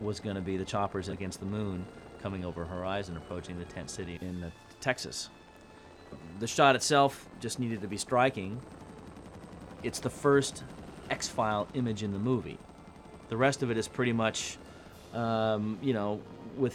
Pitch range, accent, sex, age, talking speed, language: 90-115 Hz, American, male, 30-49, 160 wpm, English